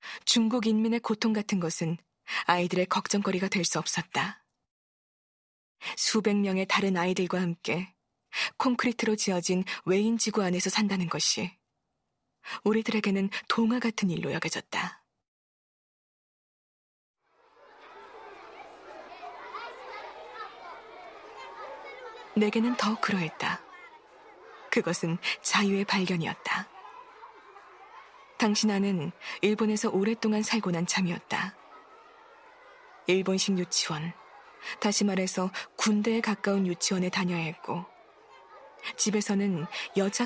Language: Korean